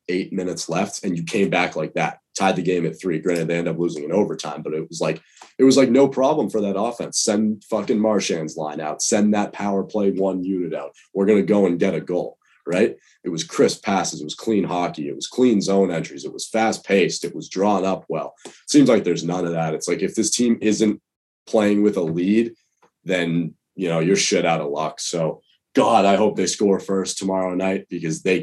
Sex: male